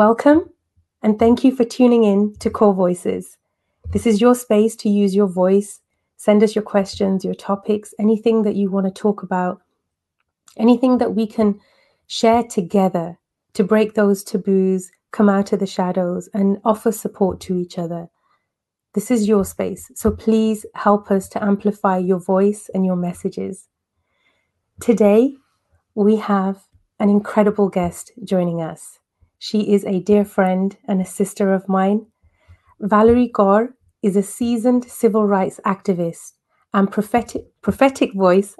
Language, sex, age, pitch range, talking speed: English, female, 30-49, 190-220 Hz, 150 wpm